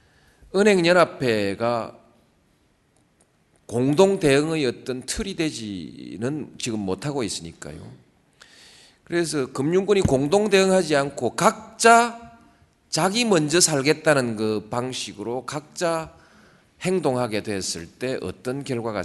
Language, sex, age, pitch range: Korean, male, 40-59, 110-180 Hz